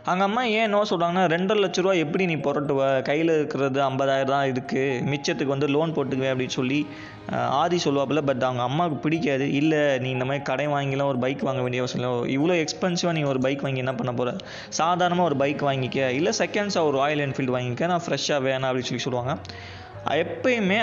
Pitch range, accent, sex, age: 130-165 Hz, native, male, 20-39